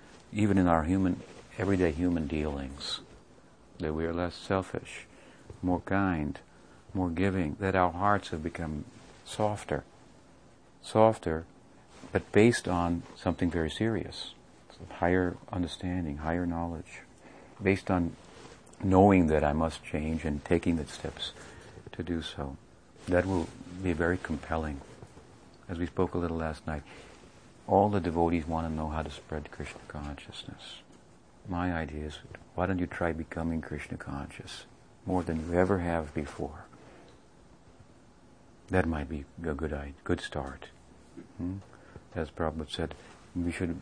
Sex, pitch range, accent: male, 80-90 Hz, American